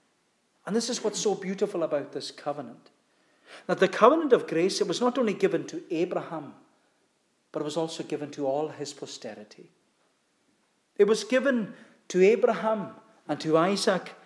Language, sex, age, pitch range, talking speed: English, male, 40-59, 160-215 Hz, 160 wpm